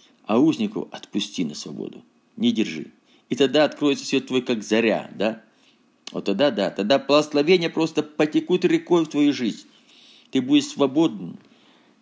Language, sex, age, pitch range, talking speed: Russian, male, 50-69, 110-150 Hz, 150 wpm